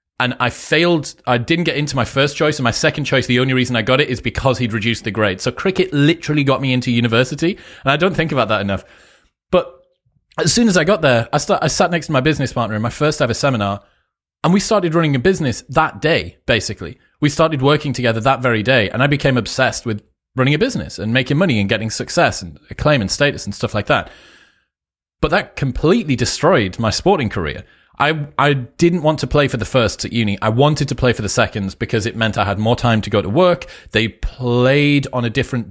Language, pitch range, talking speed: English, 110-145 Hz, 235 wpm